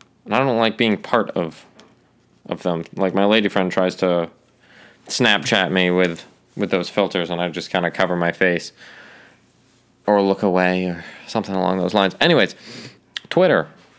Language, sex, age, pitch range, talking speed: English, male, 20-39, 90-115 Hz, 165 wpm